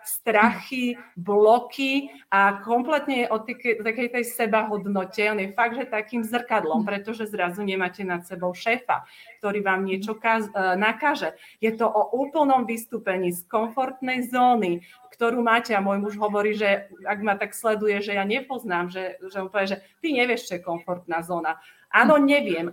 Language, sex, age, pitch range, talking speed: Czech, female, 30-49, 195-230 Hz, 160 wpm